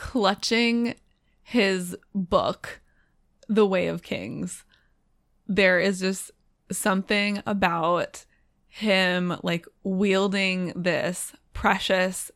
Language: English